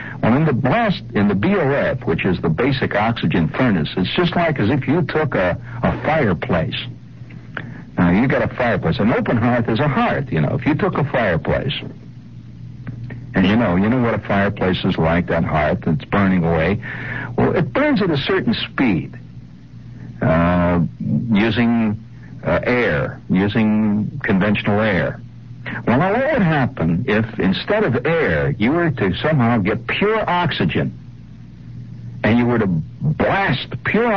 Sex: male